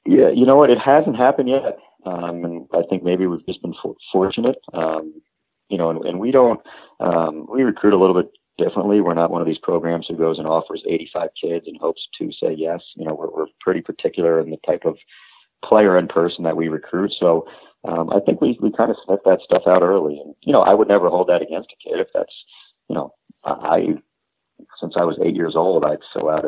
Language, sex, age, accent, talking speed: English, male, 40-59, American, 235 wpm